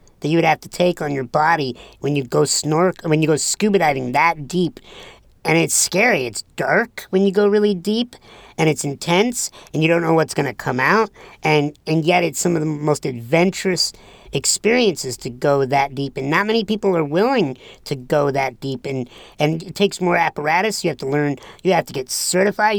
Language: English